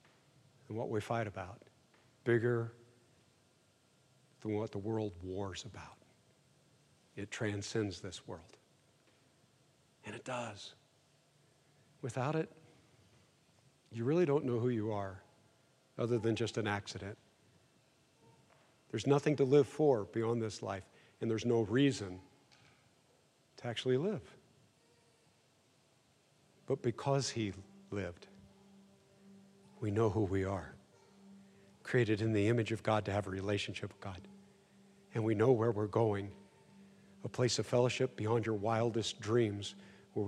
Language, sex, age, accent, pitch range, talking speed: English, male, 50-69, American, 105-150 Hz, 125 wpm